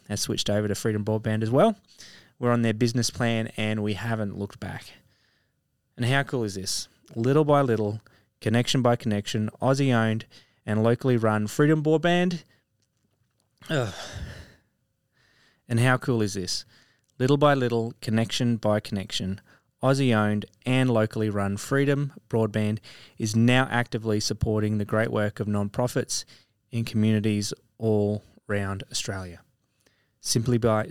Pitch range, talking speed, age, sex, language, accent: 105-130 Hz, 130 wpm, 20-39, male, English, Australian